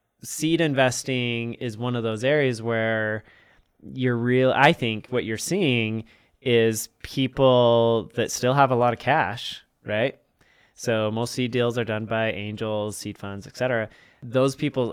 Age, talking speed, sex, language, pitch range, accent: 20-39, 155 wpm, male, English, 110-135 Hz, American